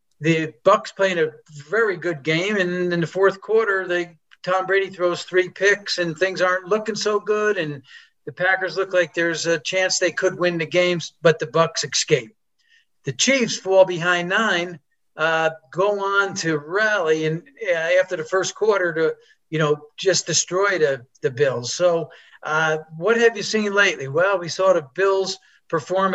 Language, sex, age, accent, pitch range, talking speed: English, male, 50-69, American, 160-195 Hz, 180 wpm